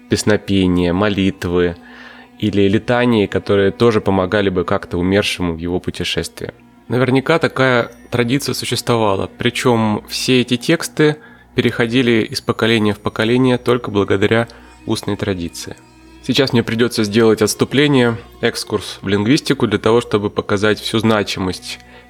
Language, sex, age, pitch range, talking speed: Russian, male, 20-39, 100-125 Hz, 120 wpm